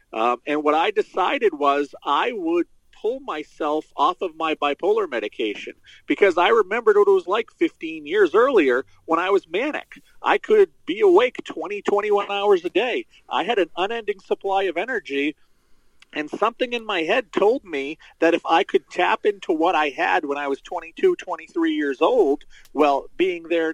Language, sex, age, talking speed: English, male, 40-59, 180 wpm